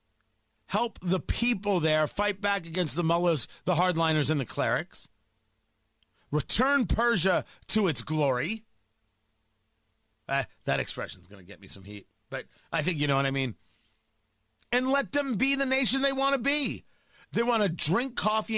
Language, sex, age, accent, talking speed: English, male, 40-59, American, 170 wpm